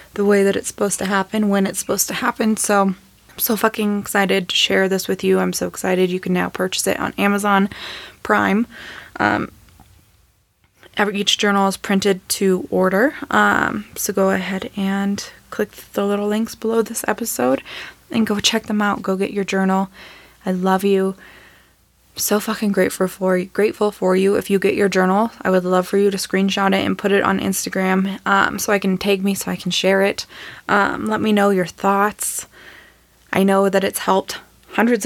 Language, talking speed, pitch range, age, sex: English, 195 wpm, 185-205 Hz, 20-39, female